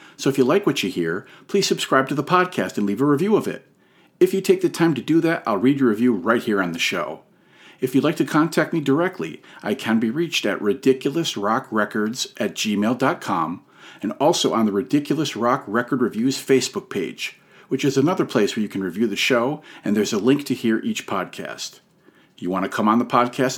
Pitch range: 115-155 Hz